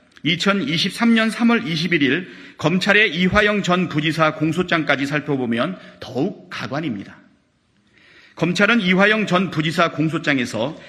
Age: 40-59